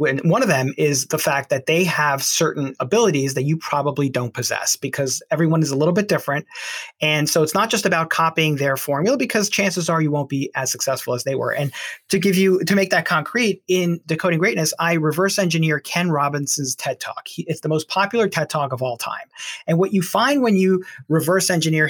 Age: 30-49